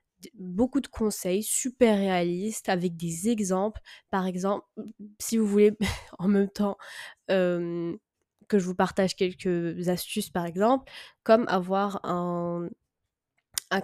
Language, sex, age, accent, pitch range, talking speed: French, female, 20-39, French, 185-225 Hz, 125 wpm